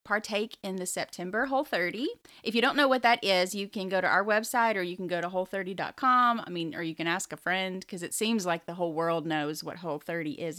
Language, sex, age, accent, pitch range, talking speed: English, female, 30-49, American, 170-225 Hz, 245 wpm